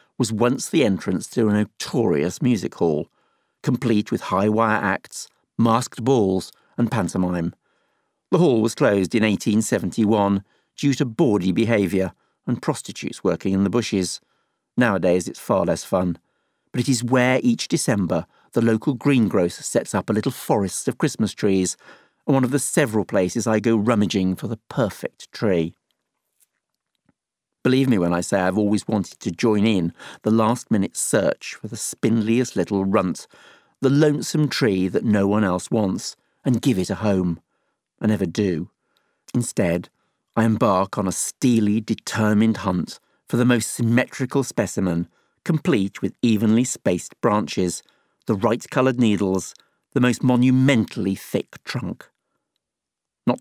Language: English